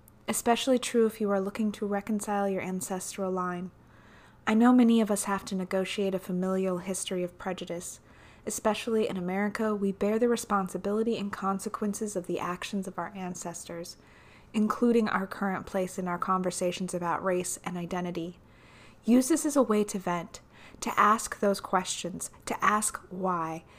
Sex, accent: female, American